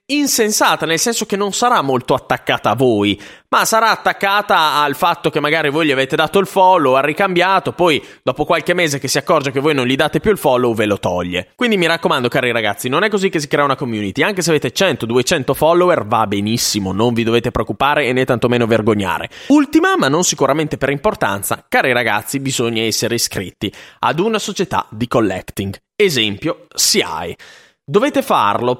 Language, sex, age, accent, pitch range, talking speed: Italian, male, 20-39, native, 125-200 Hz, 190 wpm